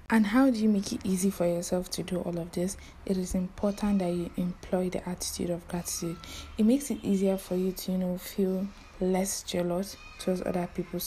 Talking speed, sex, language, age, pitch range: 210 wpm, female, English, 20-39, 170-195 Hz